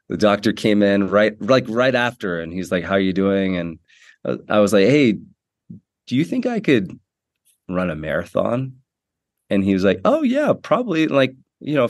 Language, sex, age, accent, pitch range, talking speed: English, male, 30-49, American, 90-110 Hz, 190 wpm